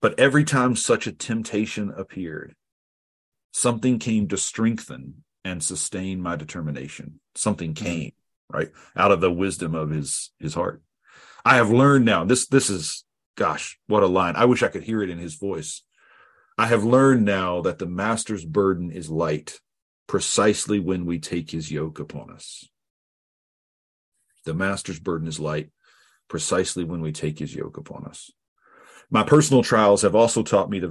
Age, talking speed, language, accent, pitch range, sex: 40-59, 165 wpm, English, American, 85-115 Hz, male